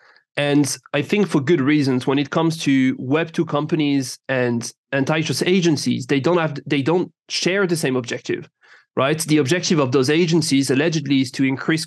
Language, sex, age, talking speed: English, male, 30-49, 170 wpm